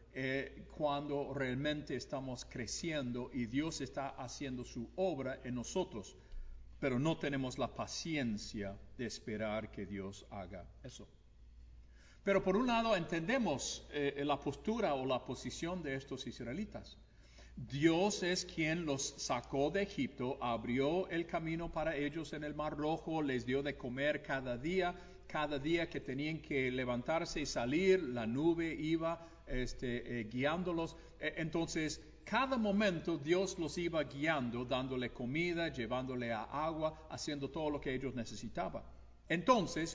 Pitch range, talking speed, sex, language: 120-165 Hz, 140 wpm, male, English